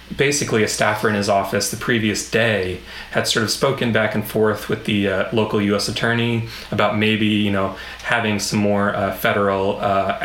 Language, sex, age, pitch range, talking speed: English, male, 30-49, 100-115 Hz, 185 wpm